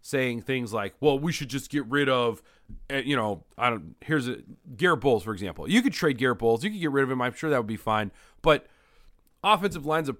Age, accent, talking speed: 30-49, American, 240 wpm